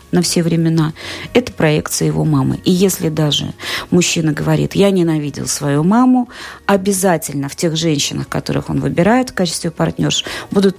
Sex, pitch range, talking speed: female, 150-205 Hz, 150 wpm